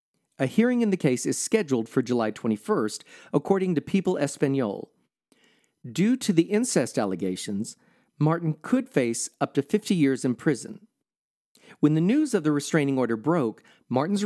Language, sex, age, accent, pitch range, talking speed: English, male, 40-59, American, 125-190 Hz, 155 wpm